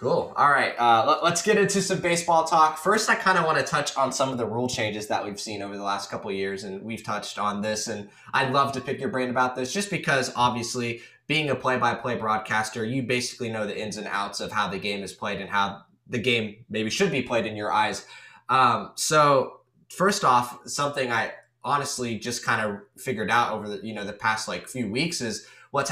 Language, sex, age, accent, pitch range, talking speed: English, male, 10-29, American, 115-135 Hz, 235 wpm